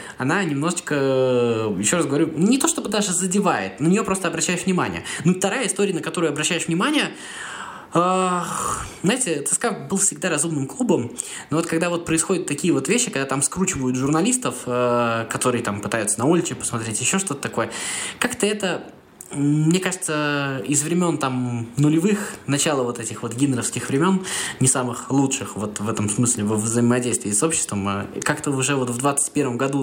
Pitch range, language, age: 115-160 Hz, Russian, 20-39